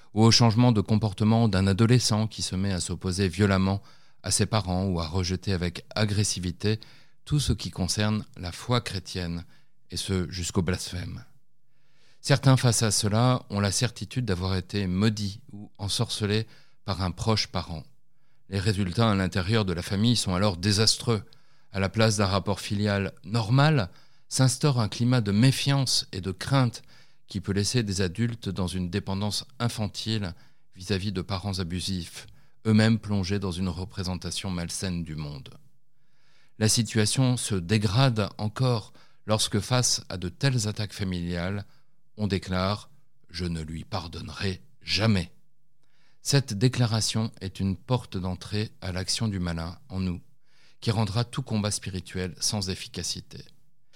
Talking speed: 145 wpm